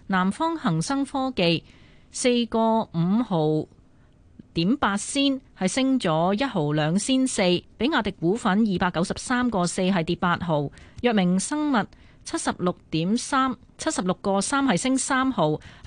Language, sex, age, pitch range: Chinese, female, 30-49, 175-245 Hz